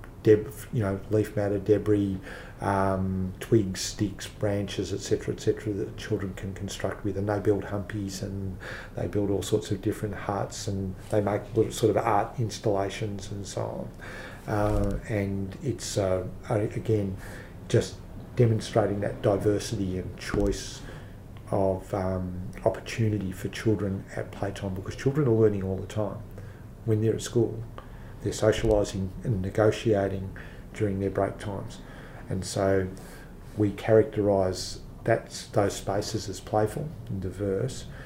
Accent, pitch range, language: Australian, 95-110 Hz, English